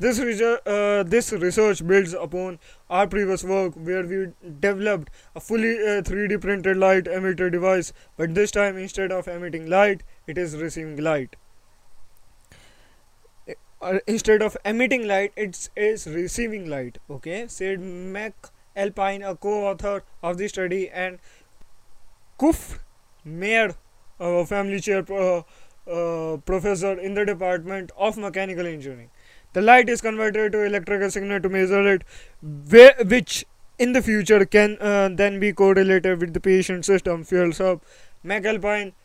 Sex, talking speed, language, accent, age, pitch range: male, 140 wpm, English, Indian, 20-39, 175-205 Hz